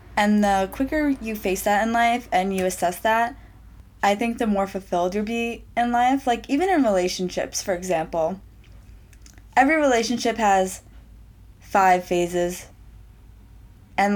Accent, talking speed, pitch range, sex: American, 140 wpm, 175-220 Hz, female